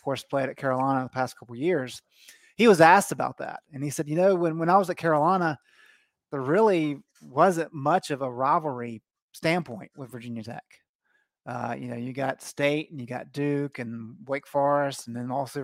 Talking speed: 205 wpm